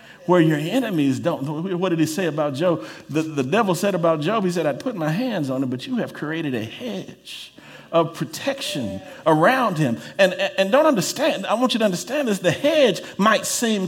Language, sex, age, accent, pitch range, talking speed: English, male, 50-69, American, 165-250 Hz, 210 wpm